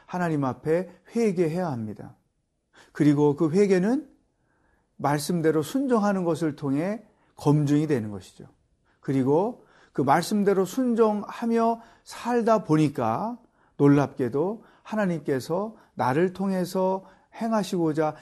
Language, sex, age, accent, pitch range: Korean, male, 40-59, native, 140-195 Hz